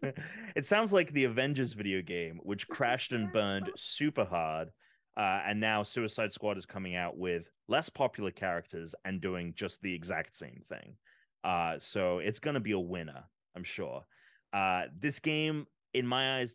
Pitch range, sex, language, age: 90-130 Hz, male, English, 30-49